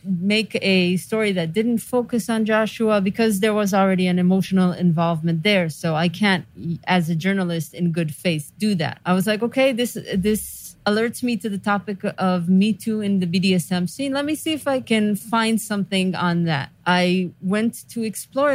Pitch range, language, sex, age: 175-215 Hz, English, female, 30-49